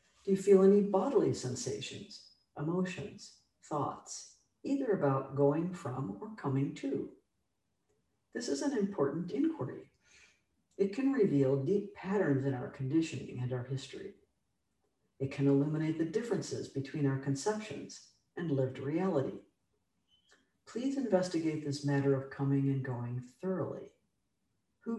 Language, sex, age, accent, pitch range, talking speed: English, female, 60-79, American, 135-195 Hz, 125 wpm